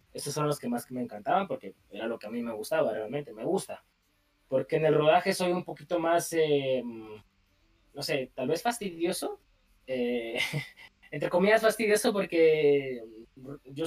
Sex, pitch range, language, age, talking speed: male, 125-175 Hz, Spanish, 20-39, 165 wpm